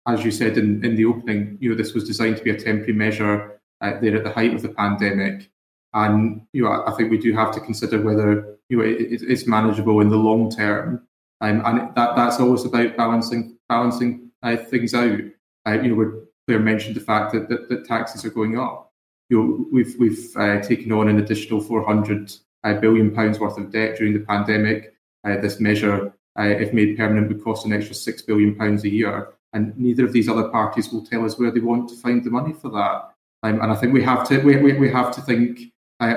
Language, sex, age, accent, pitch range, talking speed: English, male, 20-39, British, 105-120 Hz, 225 wpm